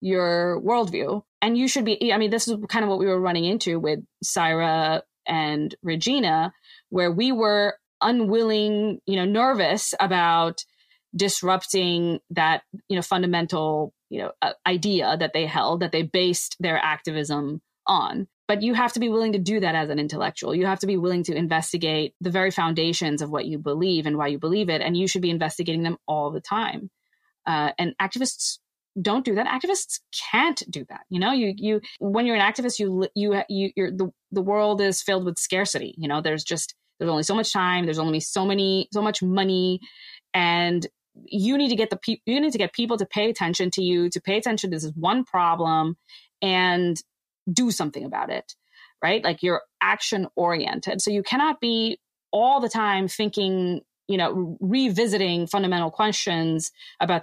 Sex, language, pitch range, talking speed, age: female, English, 165-210 Hz, 190 wpm, 20-39